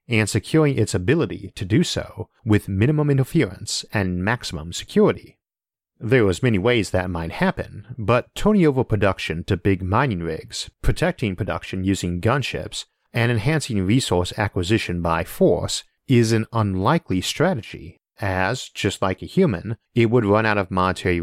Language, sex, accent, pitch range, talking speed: English, male, American, 95-120 Hz, 150 wpm